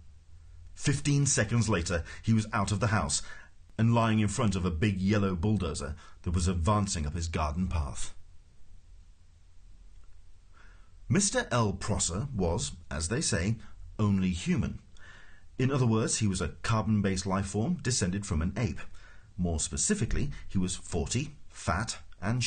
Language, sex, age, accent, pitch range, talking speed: English, male, 40-59, British, 85-110 Hz, 140 wpm